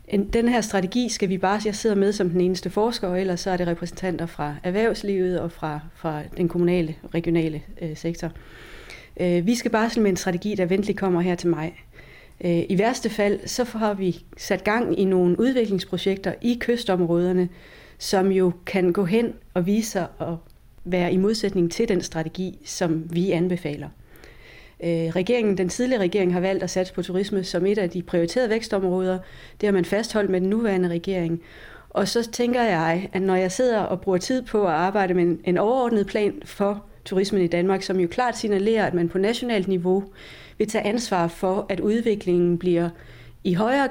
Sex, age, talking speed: female, 40-59, 190 wpm